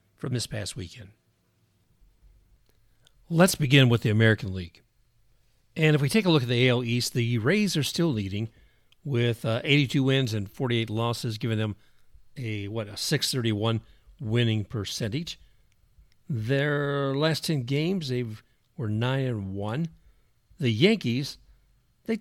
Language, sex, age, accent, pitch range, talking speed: English, male, 50-69, American, 110-130 Hz, 140 wpm